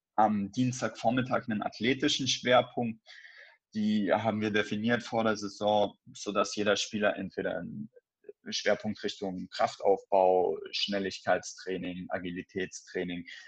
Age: 20-39